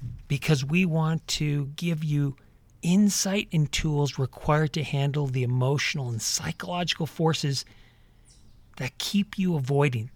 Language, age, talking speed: English, 40-59, 125 wpm